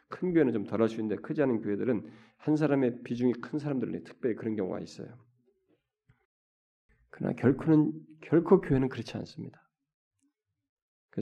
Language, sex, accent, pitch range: Korean, male, native, 110-165 Hz